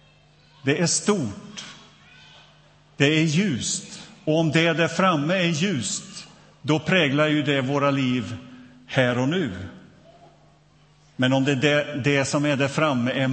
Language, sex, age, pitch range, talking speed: Swedish, male, 50-69, 135-170 Hz, 145 wpm